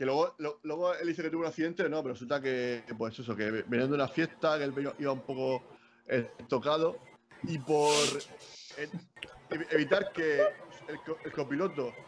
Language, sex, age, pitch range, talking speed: Spanish, male, 30-49, 135-160 Hz, 195 wpm